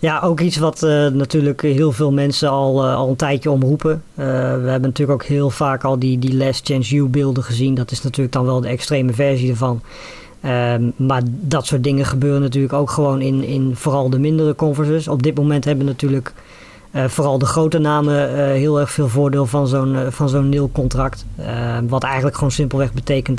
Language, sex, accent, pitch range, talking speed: Dutch, female, Dutch, 130-145 Hz, 215 wpm